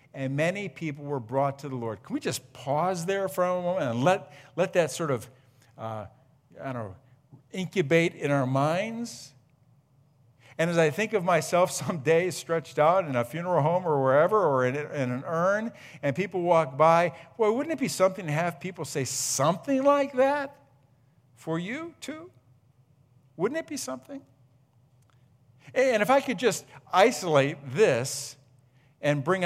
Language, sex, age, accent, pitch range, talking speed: English, male, 50-69, American, 130-170 Hz, 170 wpm